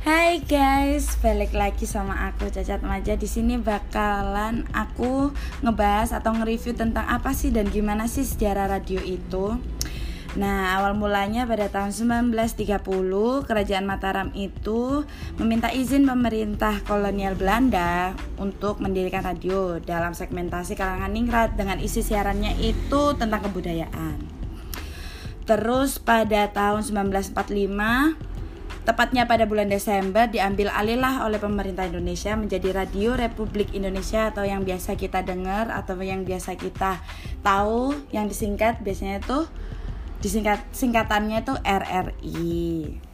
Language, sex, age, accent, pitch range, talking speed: Indonesian, female, 20-39, native, 195-230 Hz, 120 wpm